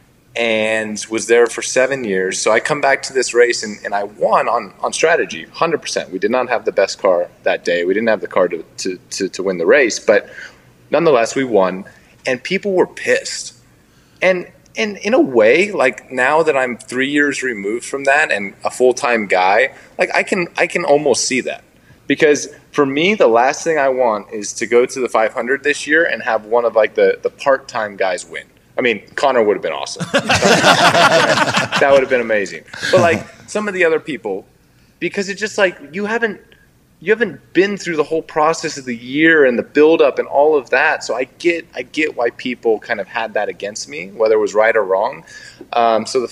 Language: English